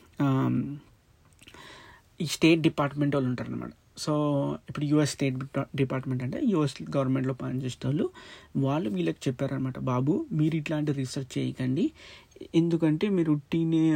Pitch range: 130-155 Hz